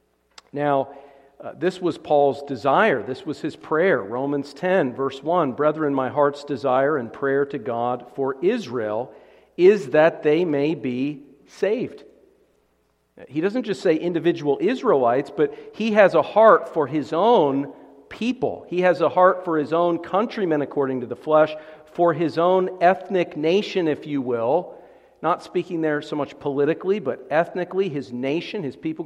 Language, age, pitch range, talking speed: English, 50-69, 140-180 Hz, 160 wpm